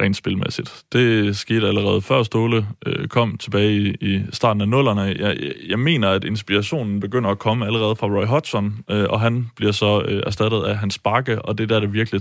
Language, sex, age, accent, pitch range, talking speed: Danish, male, 20-39, native, 100-120 Hz, 210 wpm